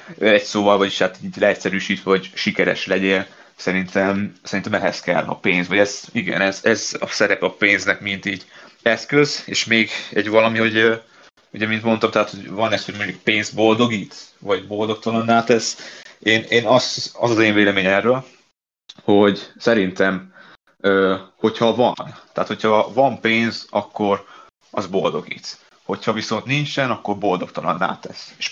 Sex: male